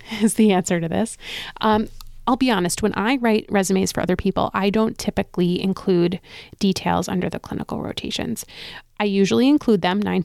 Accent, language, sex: American, English, female